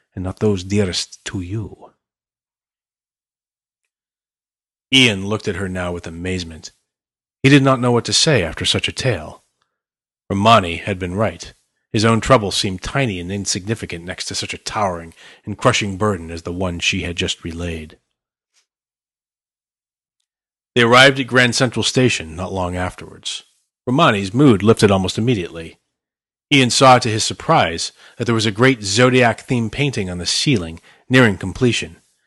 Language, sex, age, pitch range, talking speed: English, male, 40-59, 90-120 Hz, 150 wpm